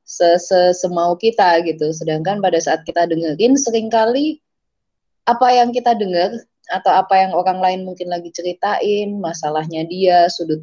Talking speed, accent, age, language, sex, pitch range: 135 wpm, native, 20-39, Indonesian, female, 160-195 Hz